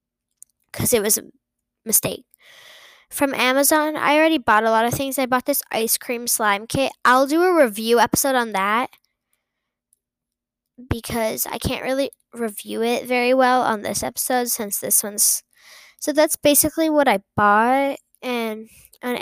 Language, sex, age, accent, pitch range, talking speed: English, female, 10-29, American, 215-265 Hz, 155 wpm